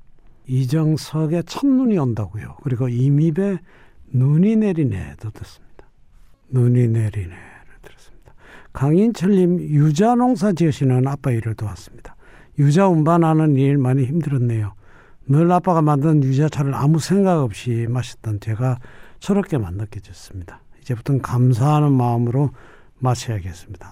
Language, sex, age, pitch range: Korean, male, 60-79, 110-155 Hz